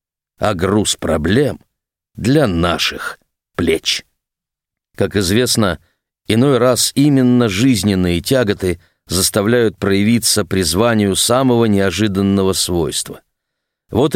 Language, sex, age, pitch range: Russian, male, 50-69, 100-130 Hz